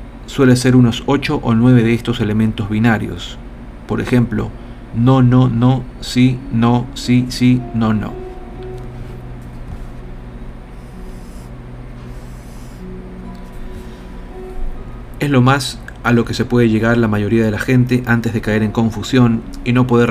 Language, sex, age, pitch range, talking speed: Spanish, male, 40-59, 110-125 Hz, 130 wpm